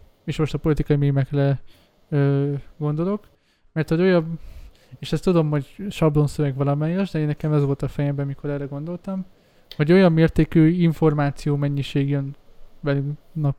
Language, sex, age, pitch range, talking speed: Hungarian, male, 20-39, 145-165 Hz, 145 wpm